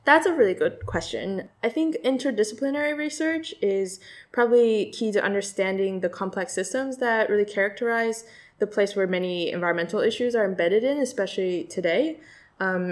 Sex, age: female, 10-29